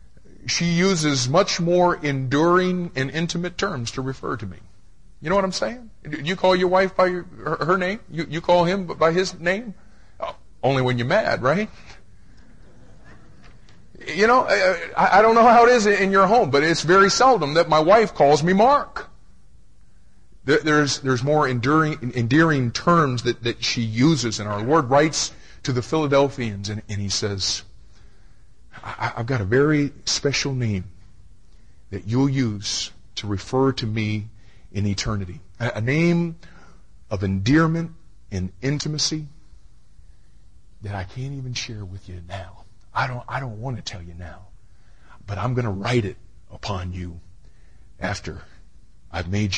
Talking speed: 150 wpm